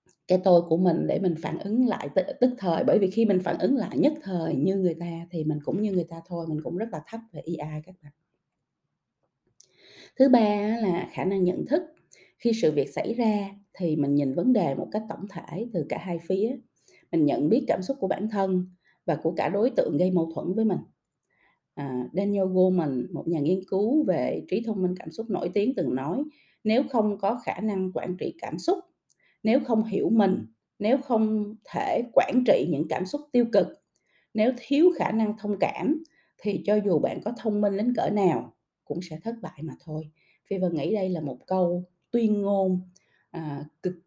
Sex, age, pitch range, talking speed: female, 20-39, 170-220 Hz, 210 wpm